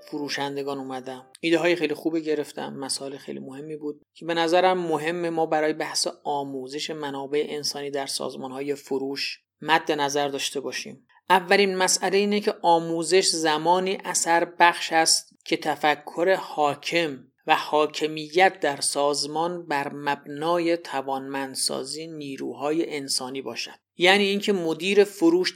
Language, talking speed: Persian, 130 wpm